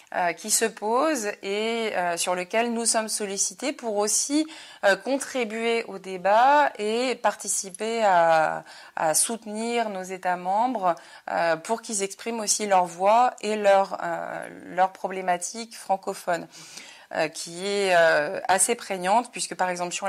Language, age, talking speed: French, 30-49, 140 wpm